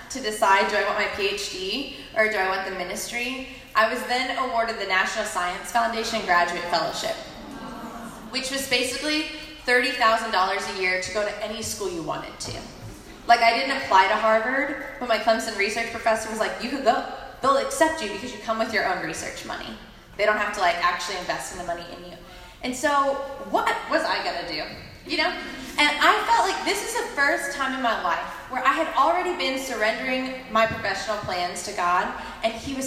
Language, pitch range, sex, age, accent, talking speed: English, 205-265 Hz, female, 20-39, American, 205 wpm